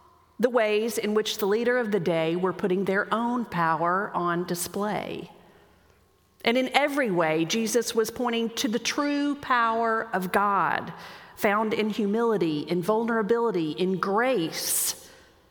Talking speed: 140 wpm